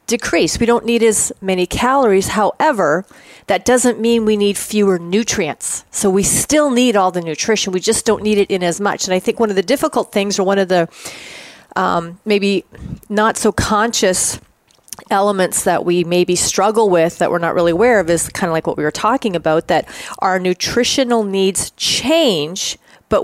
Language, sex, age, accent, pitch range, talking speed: English, female, 30-49, American, 180-225 Hz, 190 wpm